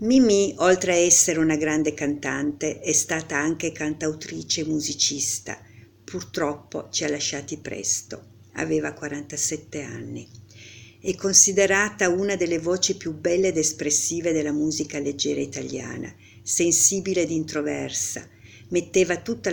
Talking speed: 120 wpm